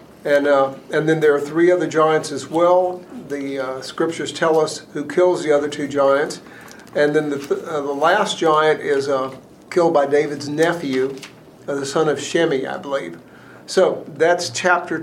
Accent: American